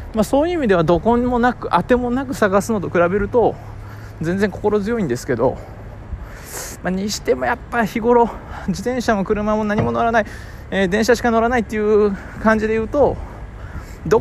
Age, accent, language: 20-39, native, Japanese